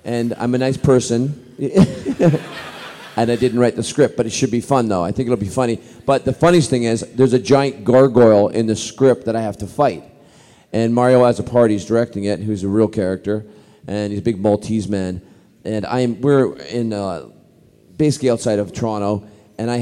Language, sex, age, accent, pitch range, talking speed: English, male, 40-59, American, 110-140 Hz, 205 wpm